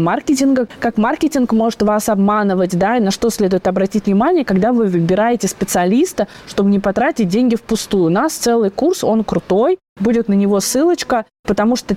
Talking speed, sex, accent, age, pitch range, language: 170 wpm, female, native, 20-39, 195-250 Hz, Russian